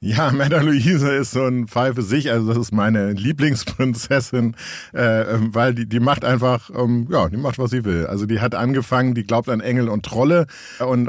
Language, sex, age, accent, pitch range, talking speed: German, male, 50-69, German, 110-130 Hz, 200 wpm